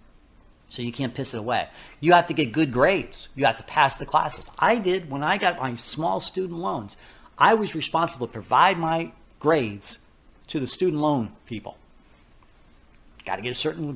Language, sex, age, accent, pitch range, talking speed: English, male, 40-59, American, 120-175 Hz, 190 wpm